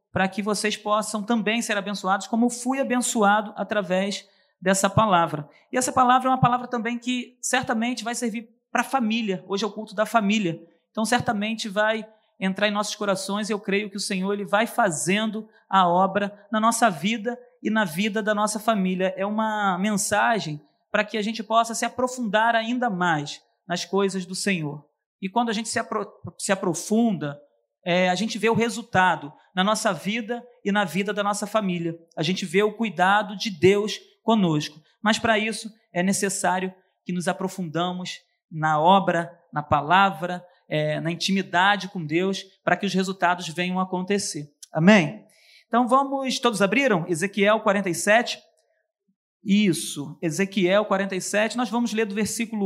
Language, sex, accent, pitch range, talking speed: Portuguese, male, Brazilian, 185-225 Hz, 165 wpm